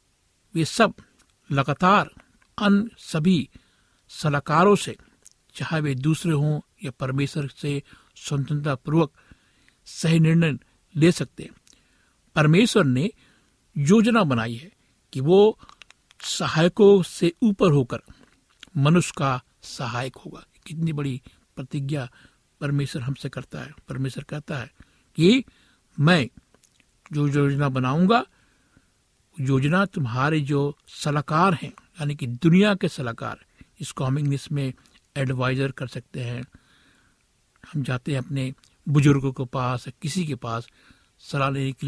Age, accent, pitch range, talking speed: 60-79, native, 130-165 Hz, 115 wpm